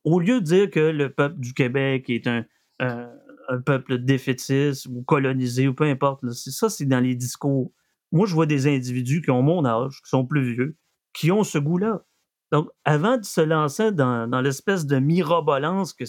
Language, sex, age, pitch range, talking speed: French, male, 30-49, 130-170 Hz, 205 wpm